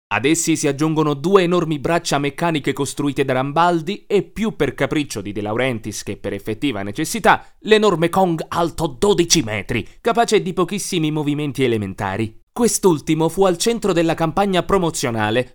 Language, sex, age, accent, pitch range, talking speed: Italian, male, 30-49, native, 125-185 Hz, 150 wpm